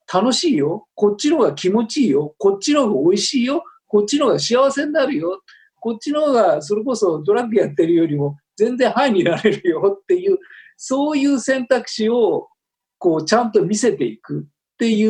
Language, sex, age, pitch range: Japanese, male, 50-69, 170-275 Hz